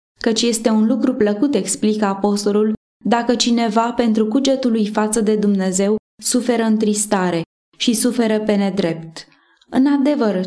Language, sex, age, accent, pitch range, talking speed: Romanian, female, 20-39, native, 205-245 Hz, 125 wpm